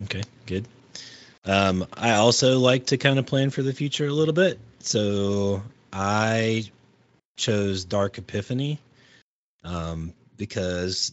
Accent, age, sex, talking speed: American, 30-49, male, 125 wpm